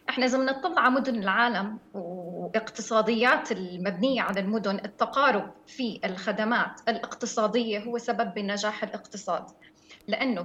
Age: 30-49